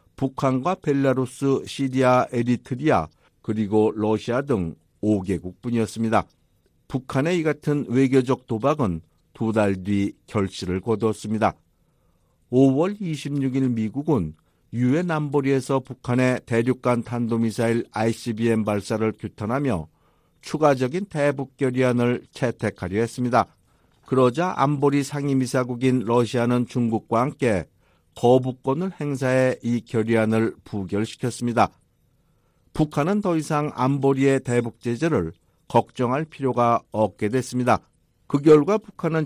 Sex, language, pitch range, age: male, Korean, 115-140 Hz, 60-79